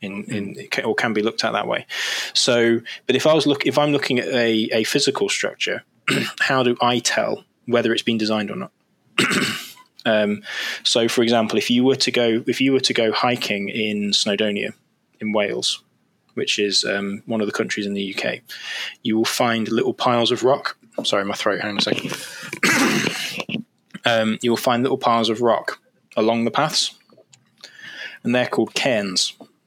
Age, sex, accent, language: 20-39, male, British, English